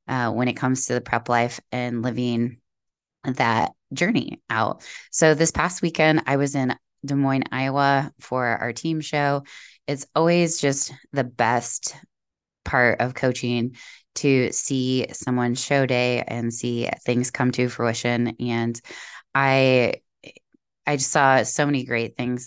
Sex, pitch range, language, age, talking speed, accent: female, 120-135 Hz, English, 20-39, 145 wpm, American